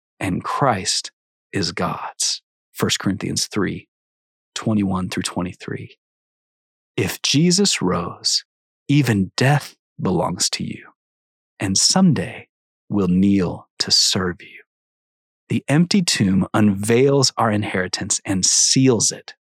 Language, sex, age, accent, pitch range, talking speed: English, male, 30-49, American, 95-135 Hz, 100 wpm